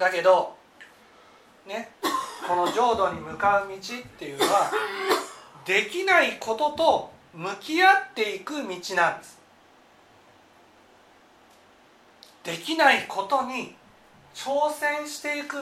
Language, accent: Japanese, native